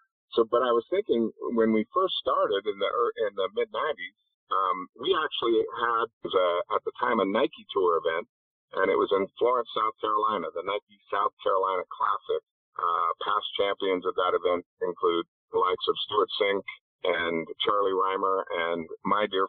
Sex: male